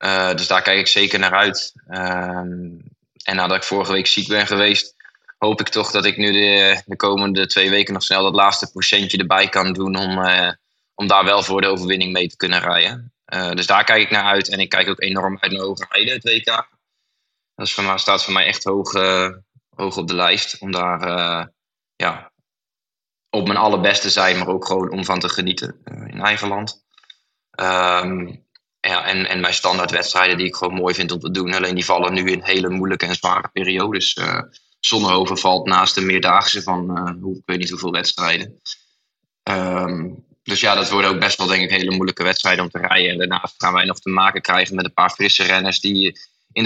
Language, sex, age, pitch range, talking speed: English, male, 20-39, 90-100 Hz, 215 wpm